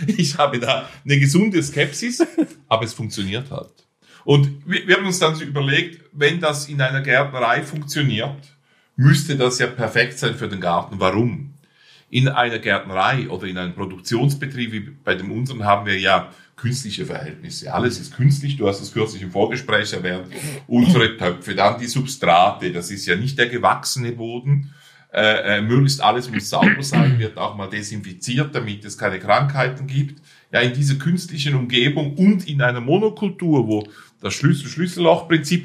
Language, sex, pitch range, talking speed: German, male, 115-150 Hz, 165 wpm